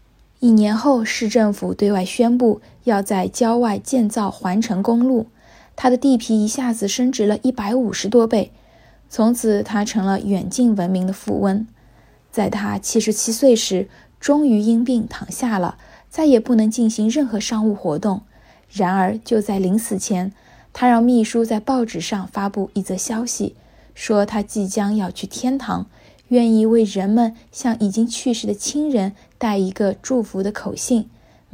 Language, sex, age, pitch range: Chinese, female, 20-39, 195-240 Hz